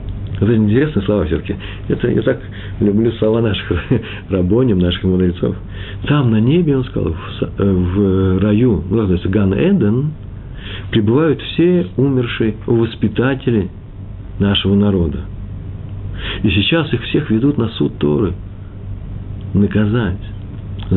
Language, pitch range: Russian, 95-115 Hz